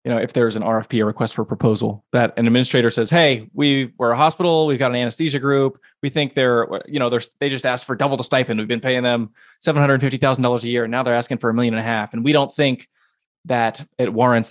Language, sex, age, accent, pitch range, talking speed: English, male, 20-39, American, 115-140 Hz, 265 wpm